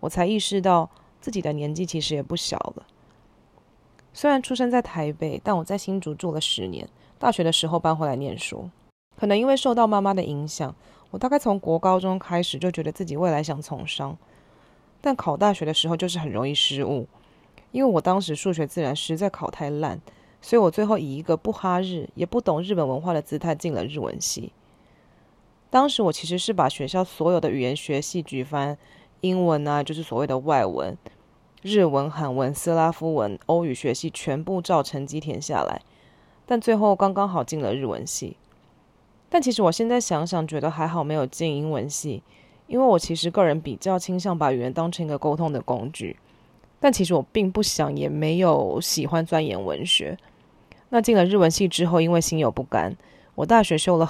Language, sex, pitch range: Chinese, female, 150-190 Hz